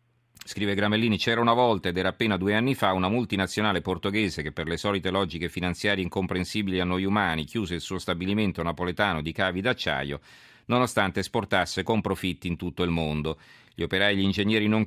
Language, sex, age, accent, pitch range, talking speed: Italian, male, 40-59, native, 85-105 Hz, 185 wpm